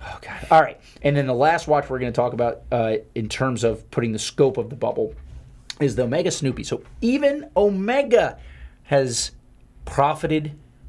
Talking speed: 170 wpm